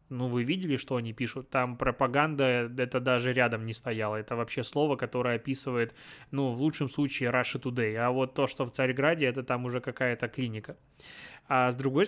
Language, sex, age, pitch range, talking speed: Russian, male, 20-39, 125-145 Hz, 190 wpm